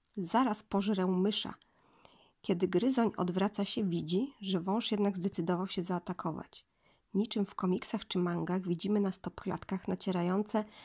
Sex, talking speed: female, 125 wpm